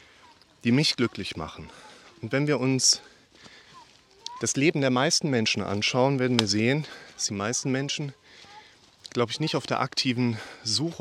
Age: 30-49